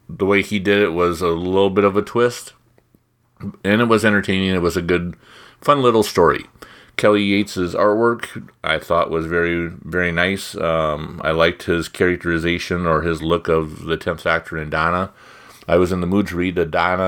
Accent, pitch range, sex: American, 80-100 Hz, male